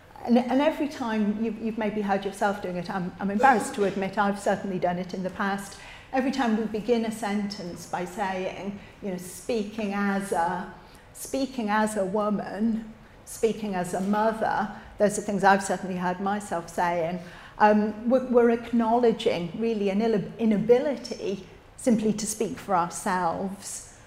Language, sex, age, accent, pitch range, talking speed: English, female, 40-59, British, 185-225 Hz, 160 wpm